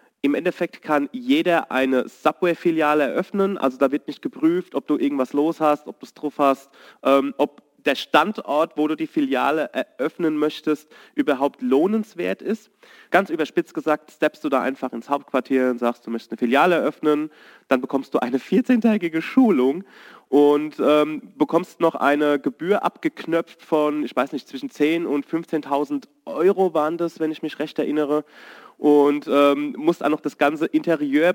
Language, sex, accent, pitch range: German, male, German, 140-170 Hz